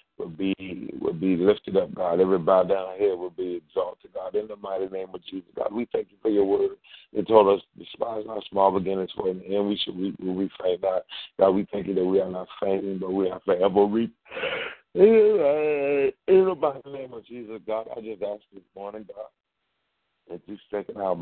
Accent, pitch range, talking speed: American, 95-110 Hz, 205 wpm